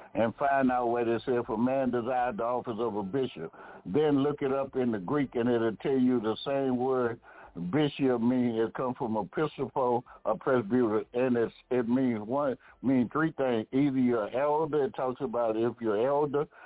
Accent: American